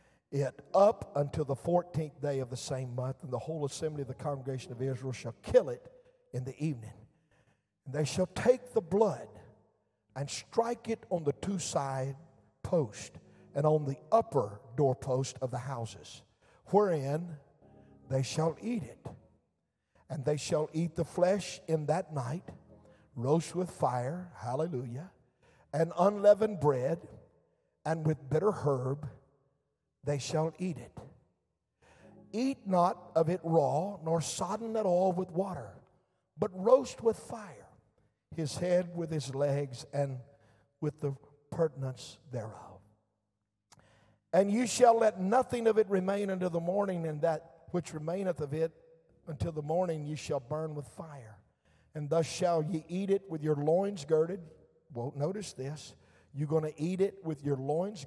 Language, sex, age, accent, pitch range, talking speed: English, male, 50-69, American, 135-180 Hz, 150 wpm